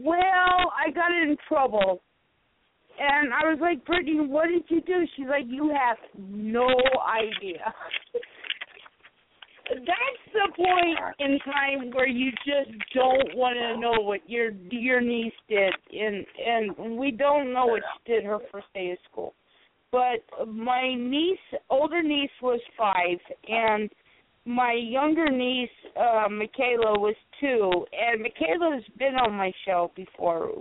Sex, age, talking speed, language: female, 50-69, 140 wpm, English